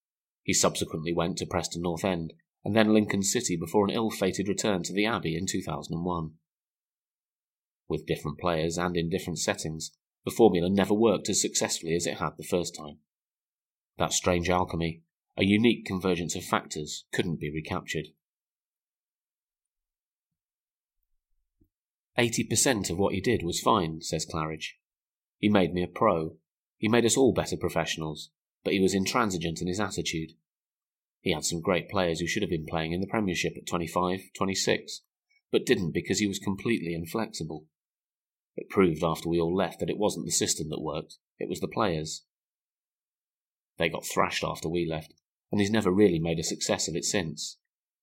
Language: English